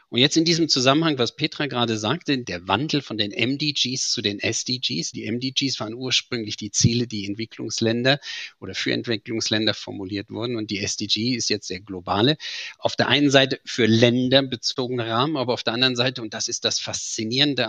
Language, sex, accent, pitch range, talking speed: German, male, German, 115-140 Hz, 185 wpm